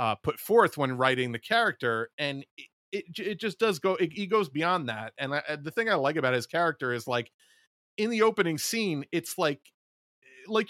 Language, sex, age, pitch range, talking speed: English, male, 30-49, 125-165 Hz, 215 wpm